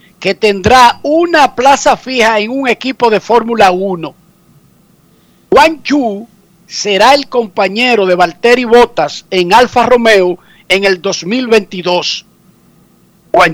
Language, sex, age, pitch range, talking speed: Spanish, male, 50-69, 200-265 Hz, 115 wpm